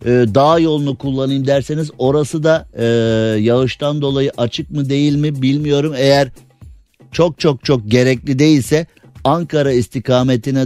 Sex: male